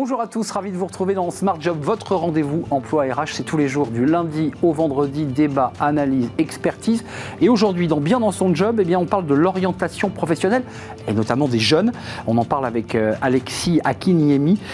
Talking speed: 205 wpm